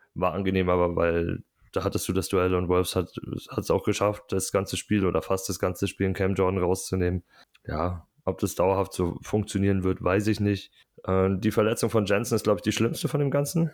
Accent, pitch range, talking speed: German, 95-110 Hz, 220 wpm